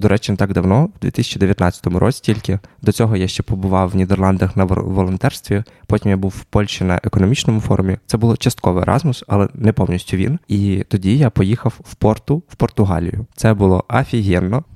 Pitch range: 95-115 Hz